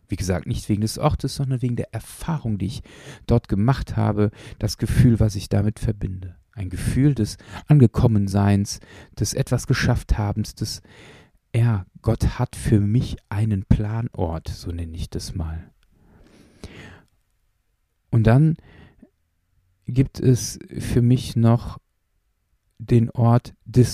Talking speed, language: 125 wpm, German